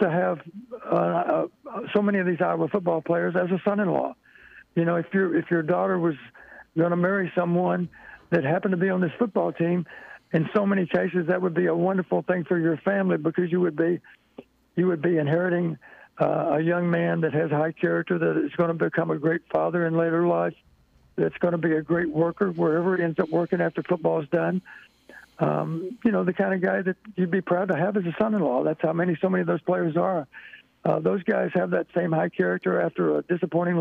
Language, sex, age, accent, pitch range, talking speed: English, male, 60-79, American, 165-185 Hz, 225 wpm